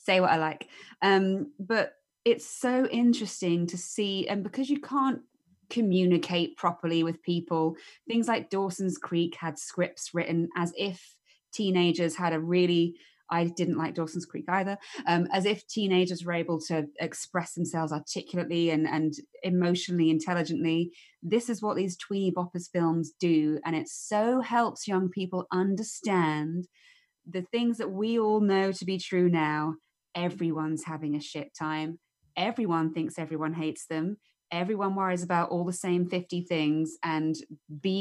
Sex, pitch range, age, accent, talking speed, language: female, 160-195 Hz, 20-39, British, 155 wpm, English